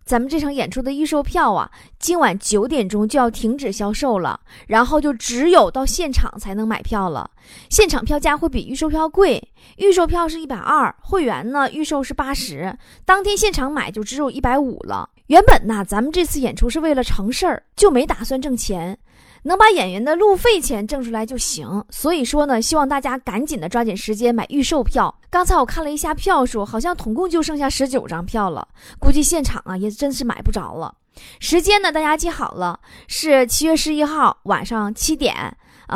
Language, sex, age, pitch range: Chinese, female, 20-39, 225-315 Hz